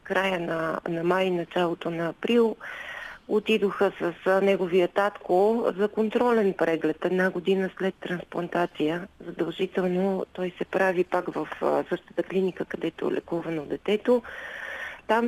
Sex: female